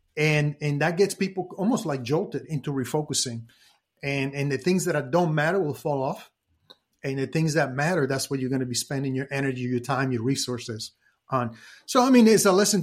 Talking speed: 210 wpm